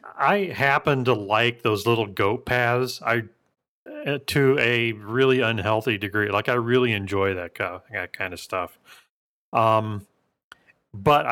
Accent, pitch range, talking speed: American, 110-130 Hz, 145 wpm